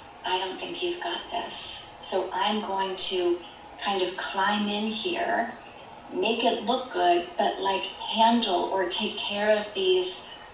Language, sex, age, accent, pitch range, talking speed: English, female, 30-49, American, 185-230 Hz, 155 wpm